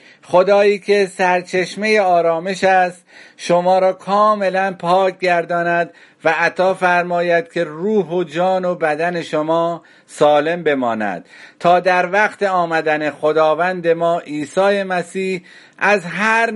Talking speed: 115 wpm